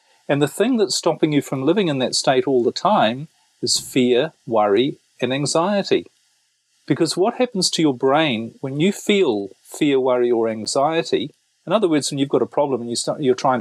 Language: English